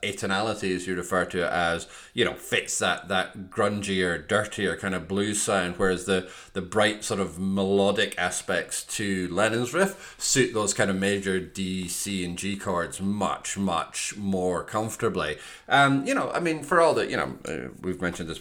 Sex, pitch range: male, 90-100 Hz